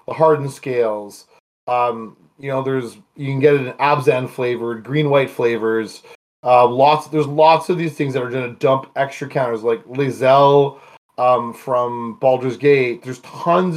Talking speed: 165 wpm